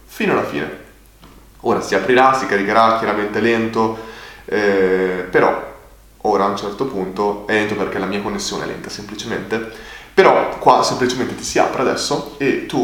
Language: Italian